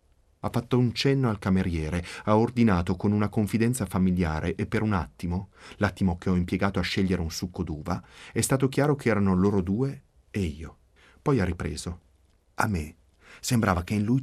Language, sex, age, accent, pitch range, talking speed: Italian, male, 30-49, native, 85-110 Hz, 180 wpm